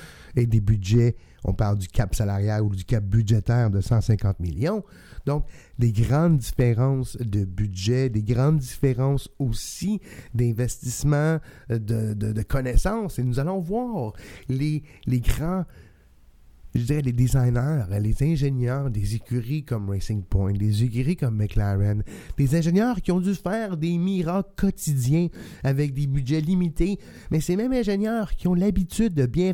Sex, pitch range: male, 110-155 Hz